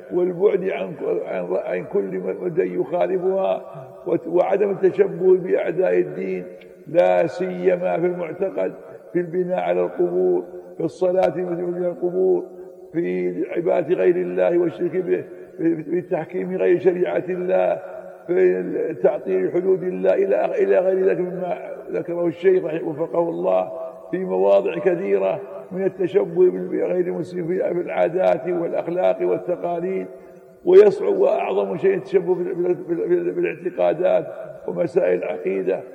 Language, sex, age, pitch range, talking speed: Arabic, male, 60-79, 170-190 Hz, 105 wpm